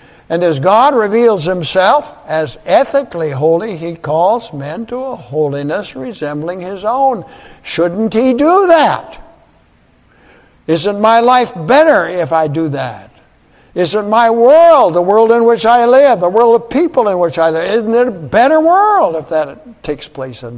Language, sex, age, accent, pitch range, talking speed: English, male, 60-79, American, 160-235 Hz, 165 wpm